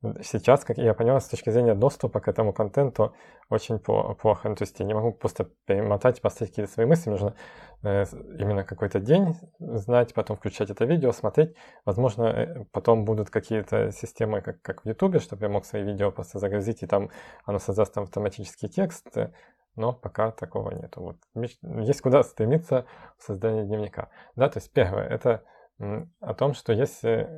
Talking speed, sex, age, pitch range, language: 170 wpm, male, 20-39, 105-125 Hz, Russian